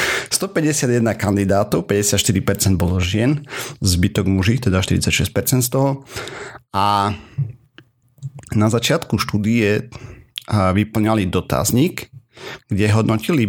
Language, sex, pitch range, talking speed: Slovak, male, 95-120 Hz, 85 wpm